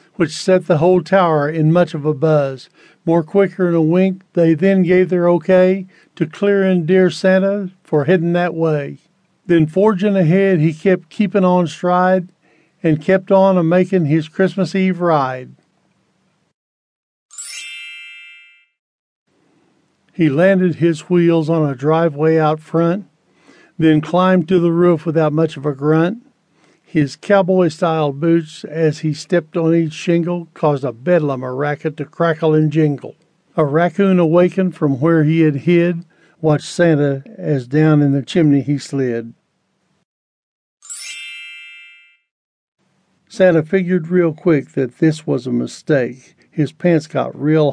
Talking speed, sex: 140 wpm, male